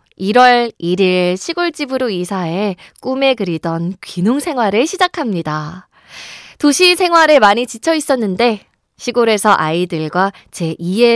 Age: 20-39